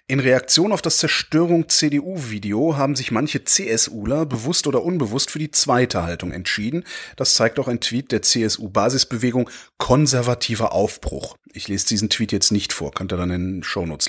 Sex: male